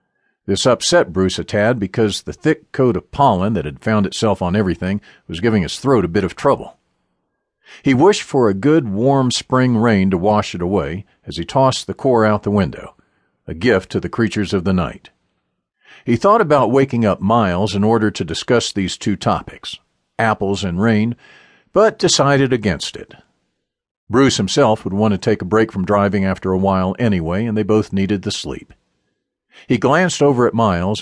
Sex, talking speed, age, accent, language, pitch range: male, 190 wpm, 50-69, American, English, 95-125 Hz